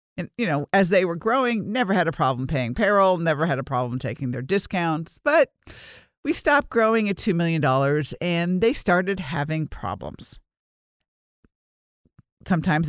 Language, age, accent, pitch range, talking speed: English, 50-69, American, 140-185 Hz, 160 wpm